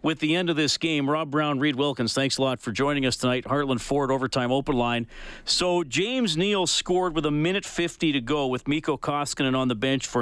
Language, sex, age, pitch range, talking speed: English, male, 40-59, 115-145 Hz, 230 wpm